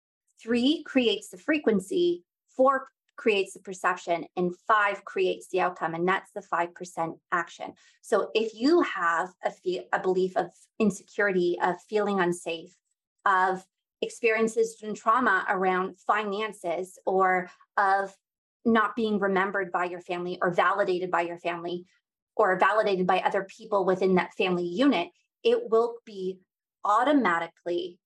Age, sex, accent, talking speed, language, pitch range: 20-39, female, American, 135 wpm, English, 185-250 Hz